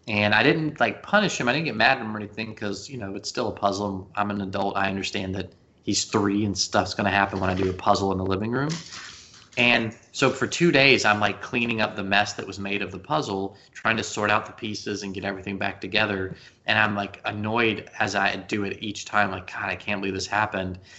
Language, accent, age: English, American, 20-39